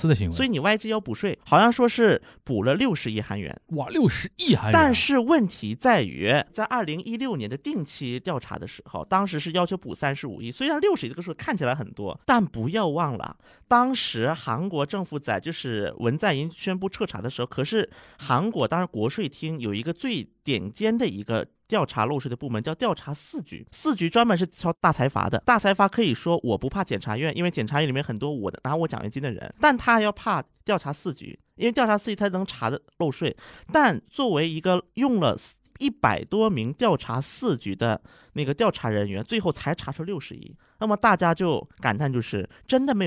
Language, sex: Chinese, male